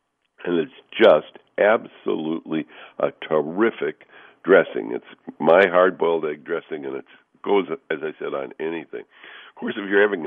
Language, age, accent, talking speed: English, 60-79, American, 145 wpm